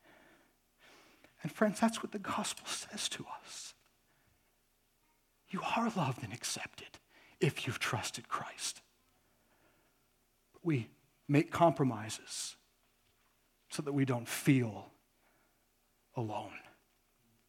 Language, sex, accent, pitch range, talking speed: English, male, American, 125-180 Hz, 95 wpm